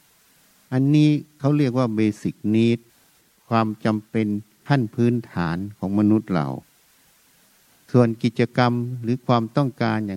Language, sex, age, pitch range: Thai, male, 60-79, 105-130 Hz